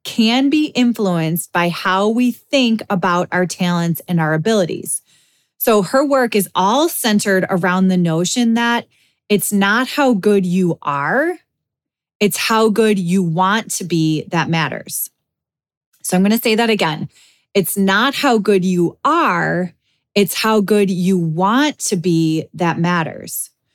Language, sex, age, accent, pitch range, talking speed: English, female, 20-39, American, 175-235 Hz, 150 wpm